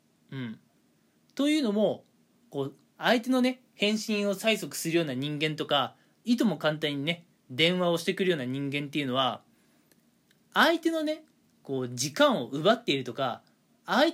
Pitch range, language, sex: 155-255 Hz, Japanese, male